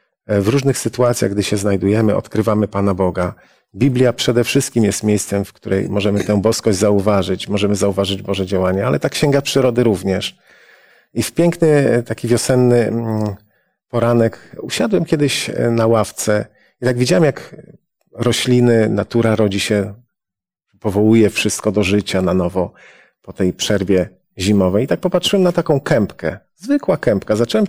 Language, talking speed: Polish, 145 wpm